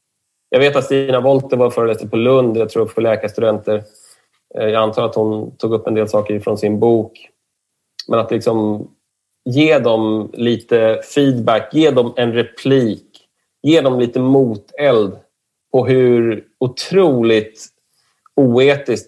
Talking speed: 140 wpm